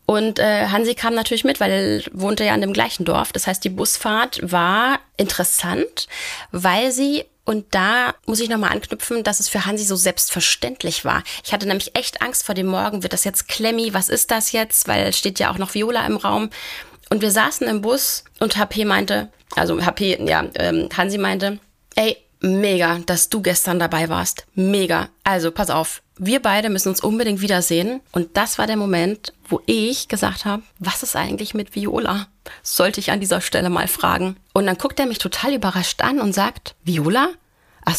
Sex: female